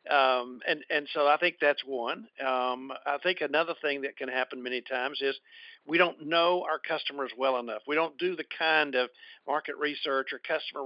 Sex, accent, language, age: male, American, English, 50-69